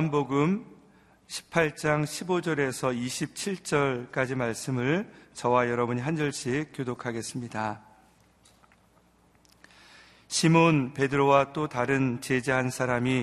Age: 40-59